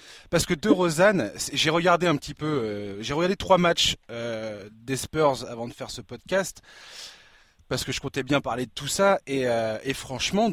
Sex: male